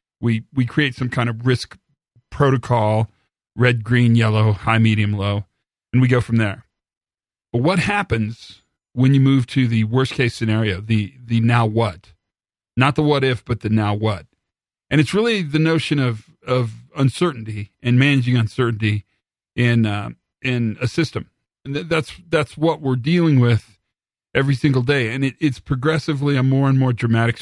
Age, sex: 40-59, male